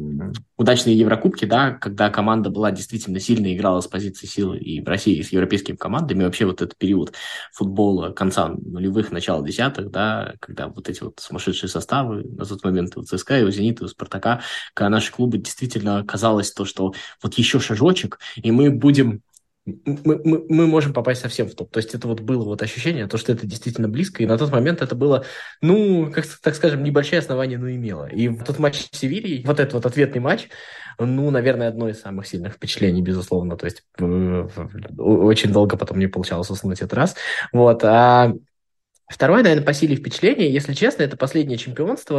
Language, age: Russian, 20-39